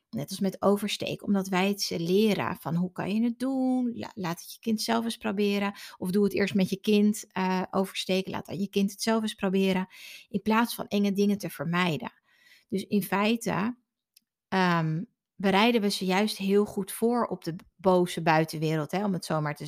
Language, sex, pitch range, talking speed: Dutch, female, 175-205 Hz, 200 wpm